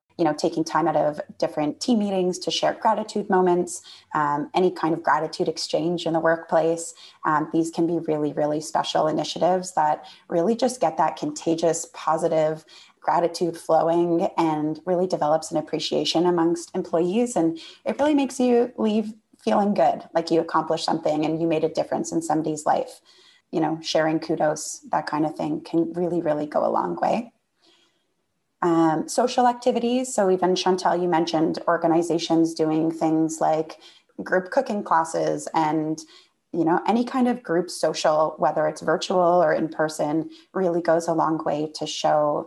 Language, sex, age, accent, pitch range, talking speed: English, female, 20-39, American, 155-180 Hz, 165 wpm